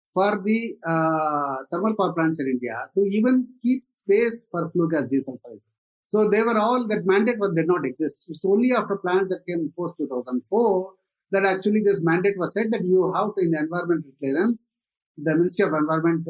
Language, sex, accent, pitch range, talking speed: English, male, Indian, 160-215 Hz, 190 wpm